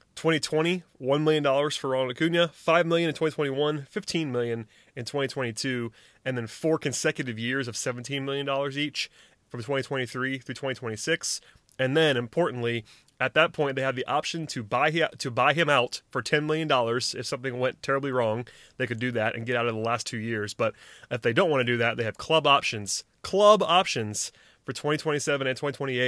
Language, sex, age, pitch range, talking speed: English, male, 30-49, 120-150 Hz, 180 wpm